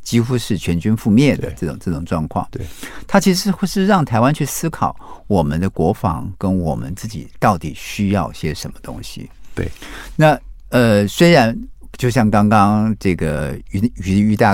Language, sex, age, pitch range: Chinese, male, 50-69, 95-125 Hz